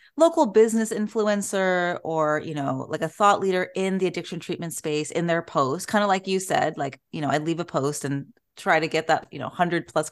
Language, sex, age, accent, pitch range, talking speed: English, female, 30-49, American, 160-215 Hz, 230 wpm